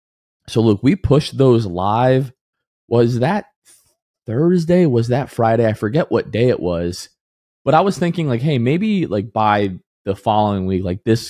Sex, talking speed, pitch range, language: male, 170 wpm, 105-135 Hz, English